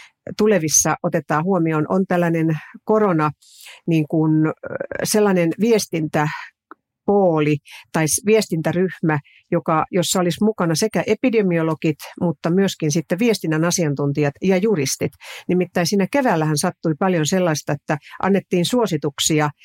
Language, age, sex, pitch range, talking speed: Finnish, 50-69, female, 150-195 Hz, 105 wpm